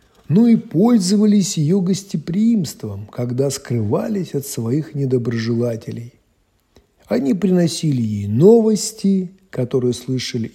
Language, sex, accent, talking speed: Russian, male, native, 90 wpm